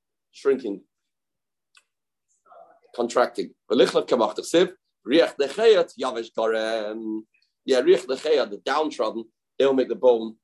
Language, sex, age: English, male, 40-59